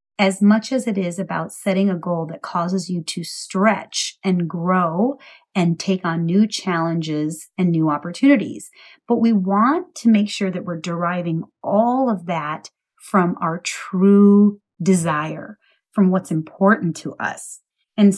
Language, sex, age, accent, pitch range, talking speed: English, female, 30-49, American, 170-220 Hz, 150 wpm